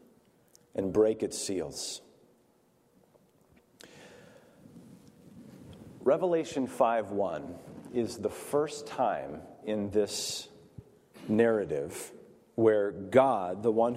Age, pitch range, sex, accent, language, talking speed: 40-59, 110-140 Hz, male, American, English, 75 wpm